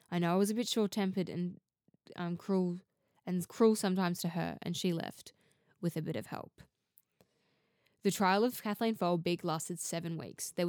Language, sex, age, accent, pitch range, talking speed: English, female, 10-29, Australian, 170-205 Hz, 180 wpm